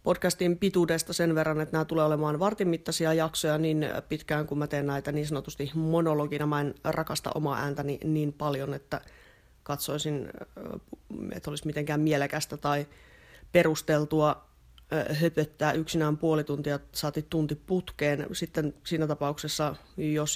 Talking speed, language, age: 135 wpm, English, 30-49